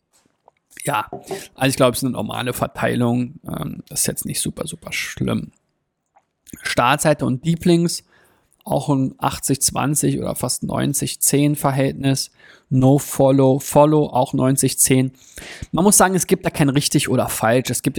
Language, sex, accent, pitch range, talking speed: German, male, German, 125-145 Hz, 140 wpm